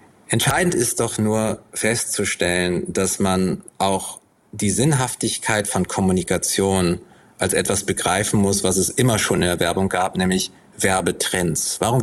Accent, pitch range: German, 100-120 Hz